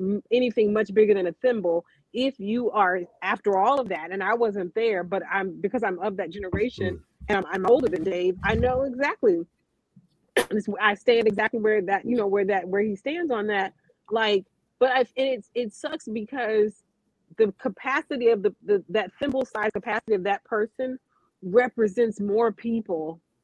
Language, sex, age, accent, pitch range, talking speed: English, female, 30-49, American, 180-225 Hz, 175 wpm